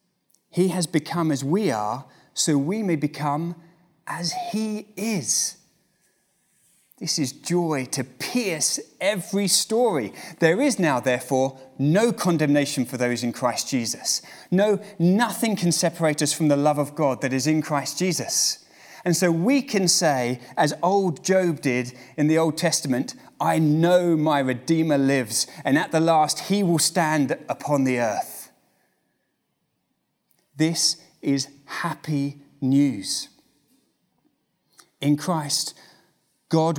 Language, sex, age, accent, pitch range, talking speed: English, male, 30-49, British, 140-185 Hz, 130 wpm